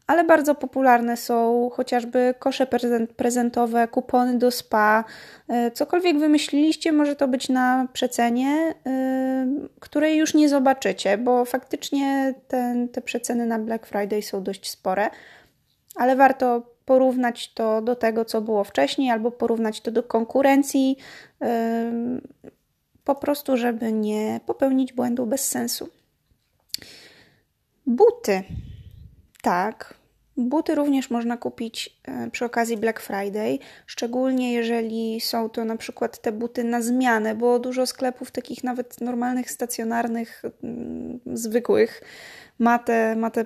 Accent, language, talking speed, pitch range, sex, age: native, Polish, 115 wpm, 230-260 Hz, female, 20-39